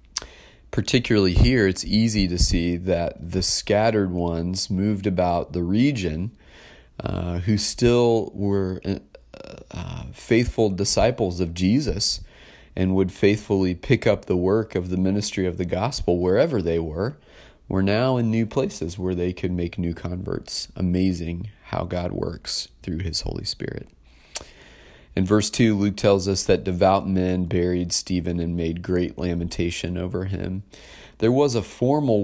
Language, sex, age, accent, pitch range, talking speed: English, male, 30-49, American, 85-100 Hz, 145 wpm